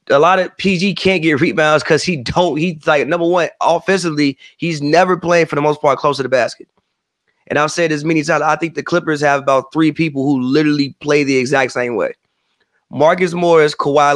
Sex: male